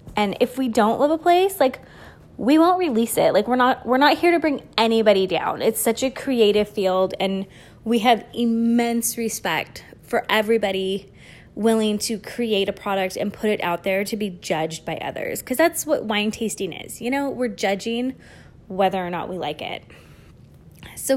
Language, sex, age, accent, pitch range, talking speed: English, female, 20-39, American, 200-280 Hz, 185 wpm